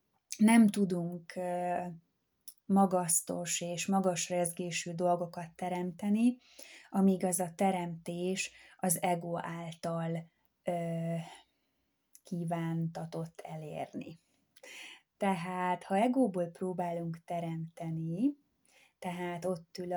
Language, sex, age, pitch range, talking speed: Hungarian, female, 20-39, 175-190 Hz, 70 wpm